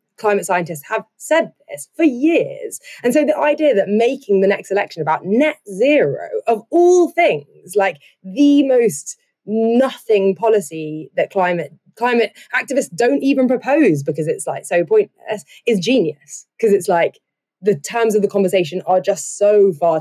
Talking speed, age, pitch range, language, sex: 160 wpm, 20-39, 180-280 Hz, English, female